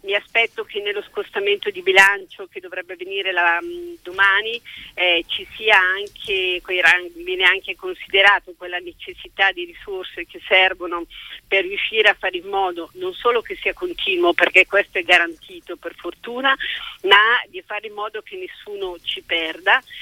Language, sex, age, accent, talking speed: Italian, female, 40-59, native, 150 wpm